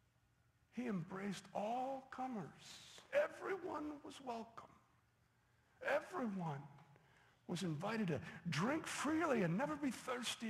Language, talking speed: English, 95 wpm